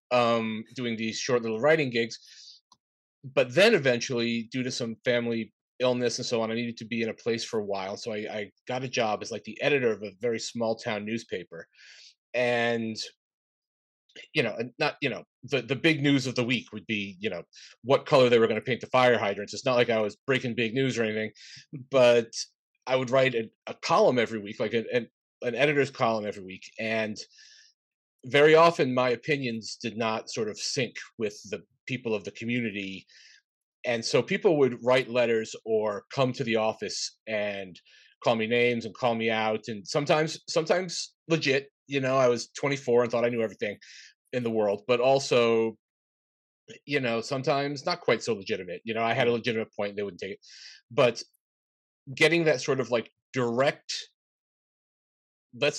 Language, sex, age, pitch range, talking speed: English, male, 30-49, 110-135 Hz, 190 wpm